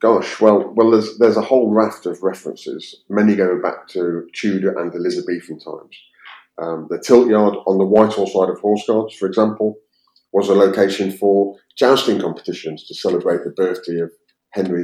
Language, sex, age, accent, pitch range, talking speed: English, male, 30-49, British, 90-110 Hz, 175 wpm